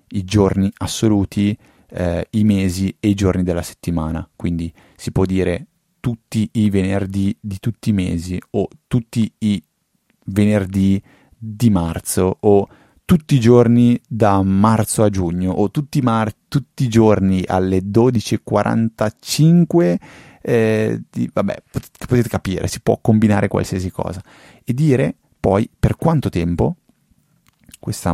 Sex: male